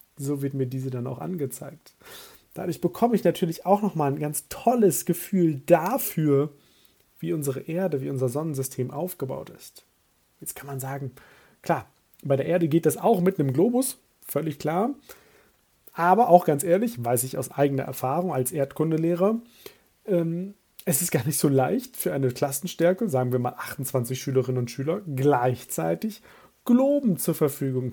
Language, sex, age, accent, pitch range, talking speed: German, male, 40-59, German, 135-185 Hz, 160 wpm